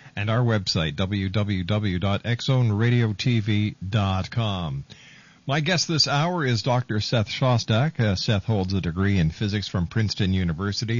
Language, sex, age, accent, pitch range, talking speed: English, male, 50-69, American, 100-125 Hz, 120 wpm